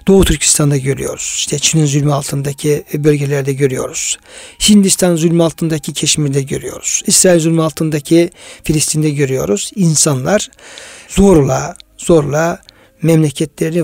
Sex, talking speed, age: male, 100 wpm, 60-79